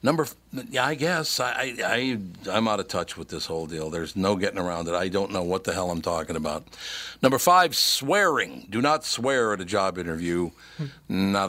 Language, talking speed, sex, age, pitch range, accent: English, 215 wpm, male, 60-79, 85-115 Hz, American